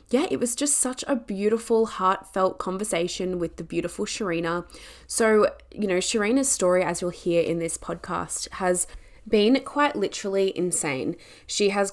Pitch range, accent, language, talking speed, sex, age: 170-195 Hz, Australian, English, 155 wpm, female, 20-39